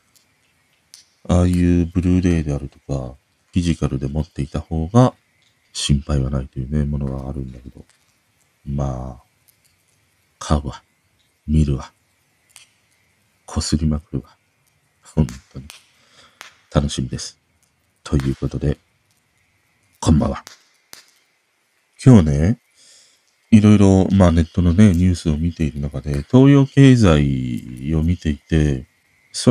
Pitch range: 75-115 Hz